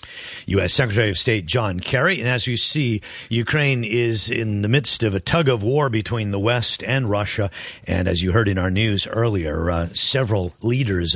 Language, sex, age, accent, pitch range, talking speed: English, male, 50-69, American, 90-125 Hz, 195 wpm